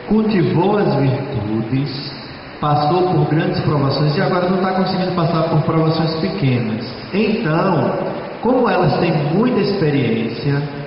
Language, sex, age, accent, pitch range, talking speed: Spanish, male, 20-39, Brazilian, 125-165 Hz, 120 wpm